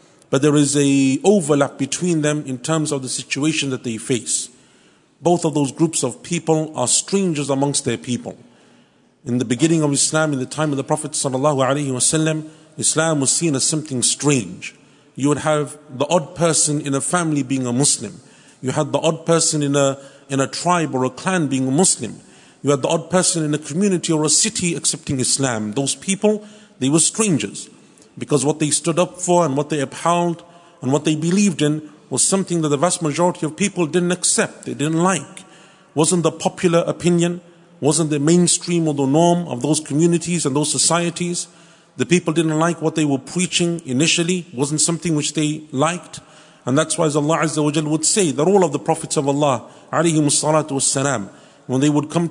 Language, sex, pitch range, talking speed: English, male, 140-170 Hz, 195 wpm